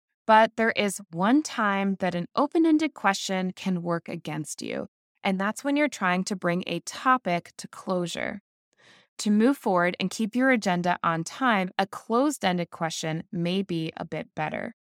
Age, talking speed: 20-39, 165 wpm